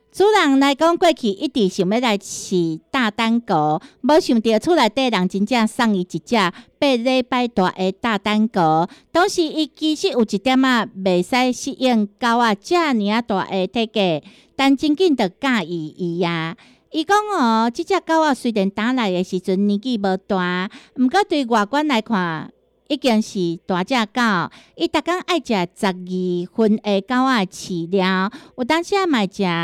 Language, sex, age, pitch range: Chinese, female, 50-69, 195-275 Hz